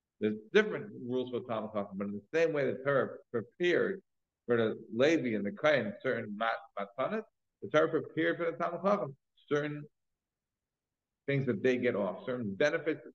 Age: 50-69